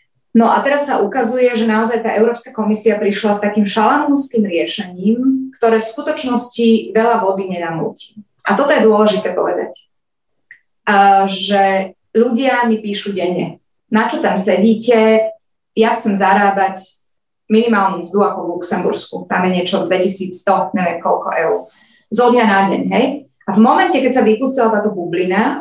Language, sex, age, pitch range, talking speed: Slovak, female, 20-39, 195-230 Hz, 150 wpm